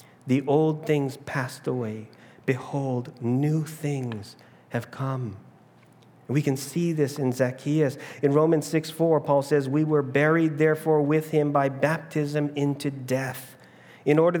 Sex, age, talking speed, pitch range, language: male, 40-59, 140 wpm, 125-150 Hz, English